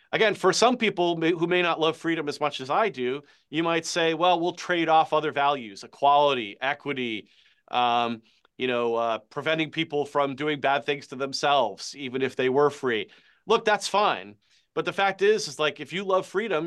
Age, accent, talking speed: 30-49, American, 200 wpm